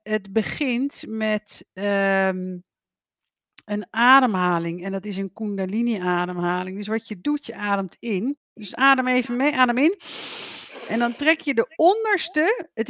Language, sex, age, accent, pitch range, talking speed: Dutch, female, 50-69, Dutch, 195-265 Hz, 140 wpm